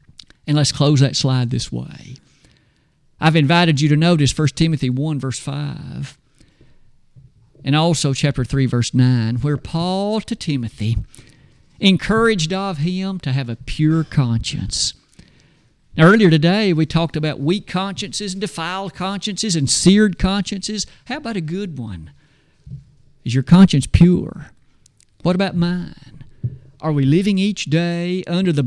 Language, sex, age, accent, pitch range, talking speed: English, male, 50-69, American, 135-175 Hz, 140 wpm